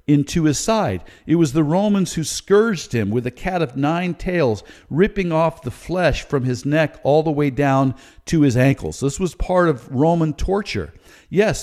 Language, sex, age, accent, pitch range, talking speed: English, male, 50-69, American, 135-180 Hz, 190 wpm